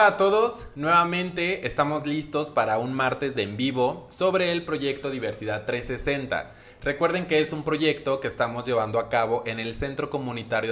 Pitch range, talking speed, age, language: 120-155 Hz, 175 wpm, 20-39, Spanish